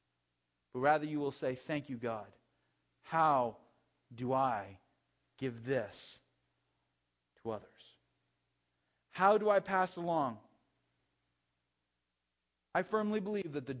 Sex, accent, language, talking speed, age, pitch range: male, American, English, 110 wpm, 40-59, 95-135 Hz